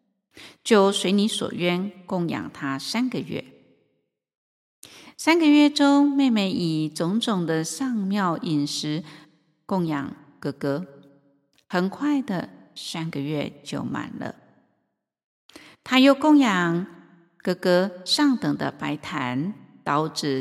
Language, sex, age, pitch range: Chinese, female, 50-69, 170-240 Hz